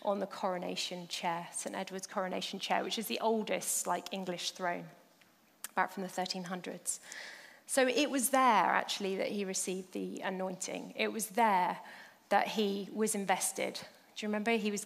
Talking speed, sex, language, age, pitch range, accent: 165 wpm, female, English, 30-49, 190-235 Hz, British